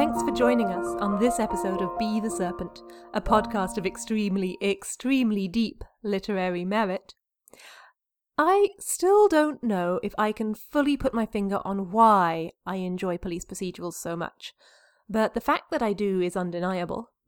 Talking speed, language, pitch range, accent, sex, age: 160 wpm, English, 185-235 Hz, British, female, 30-49